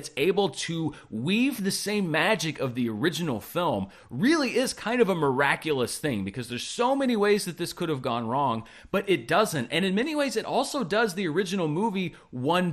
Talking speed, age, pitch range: 205 wpm, 30-49, 130-195 Hz